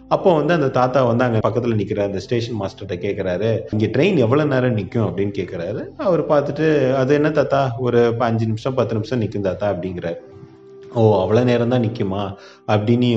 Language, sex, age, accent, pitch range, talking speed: Tamil, male, 30-49, native, 110-135 Hz, 165 wpm